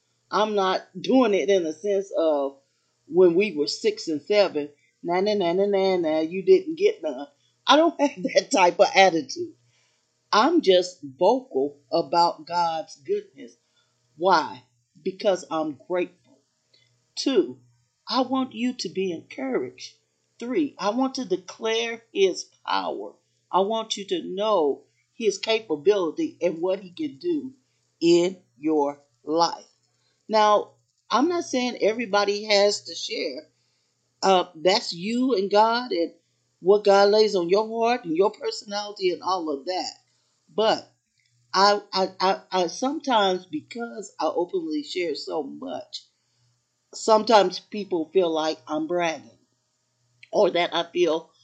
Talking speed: 140 wpm